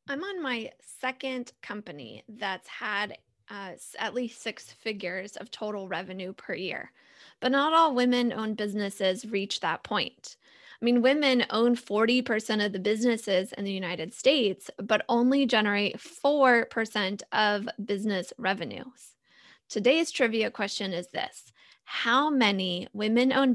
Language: English